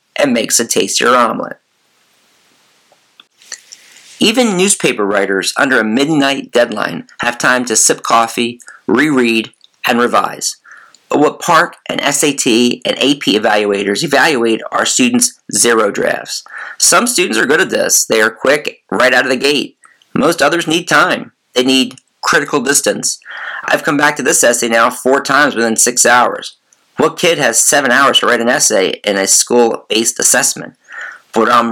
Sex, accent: male, American